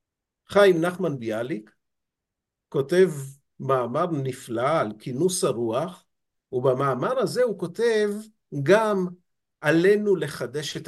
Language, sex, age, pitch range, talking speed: Hebrew, male, 50-69, 145-210 Hz, 95 wpm